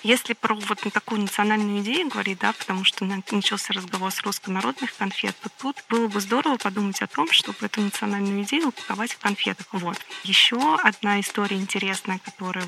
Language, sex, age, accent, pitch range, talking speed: Russian, female, 20-39, native, 190-215 Hz, 170 wpm